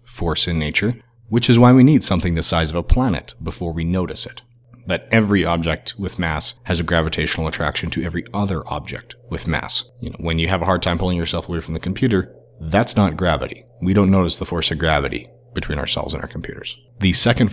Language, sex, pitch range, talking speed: English, male, 80-105 Hz, 220 wpm